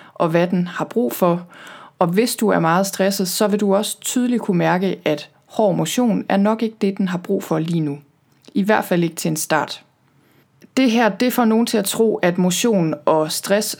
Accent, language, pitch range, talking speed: native, Danish, 175-215 Hz, 220 wpm